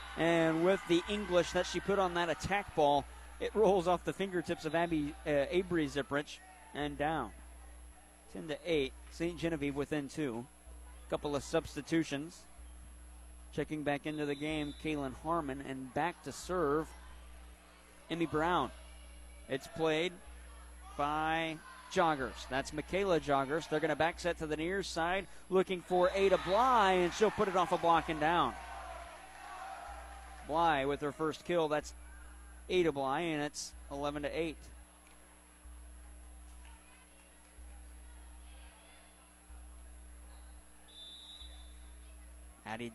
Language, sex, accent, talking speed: English, male, American, 120 wpm